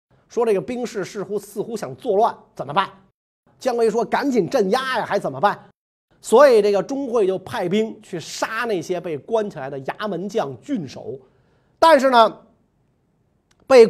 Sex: male